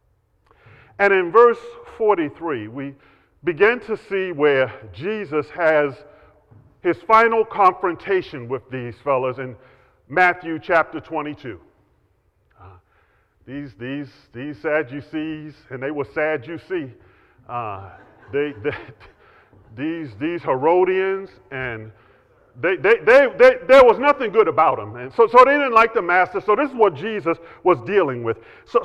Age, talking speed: 40-59, 135 wpm